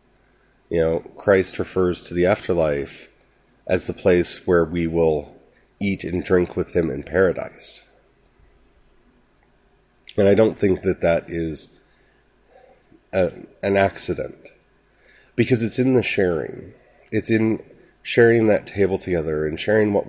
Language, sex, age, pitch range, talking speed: English, male, 30-49, 90-115 Hz, 130 wpm